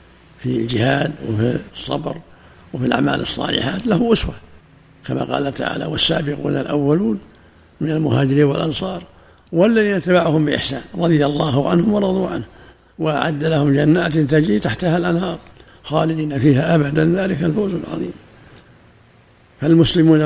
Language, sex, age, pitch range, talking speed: Arabic, male, 60-79, 130-165 Hz, 115 wpm